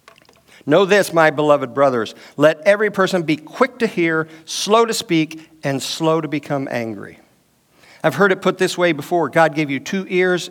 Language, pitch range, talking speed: English, 135-175 Hz, 185 wpm